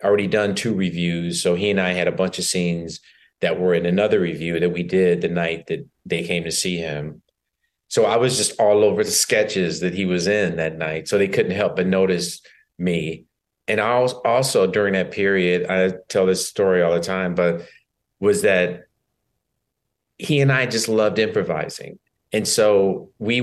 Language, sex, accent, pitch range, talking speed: English, male, American, 90-115 Hz, 190 wpm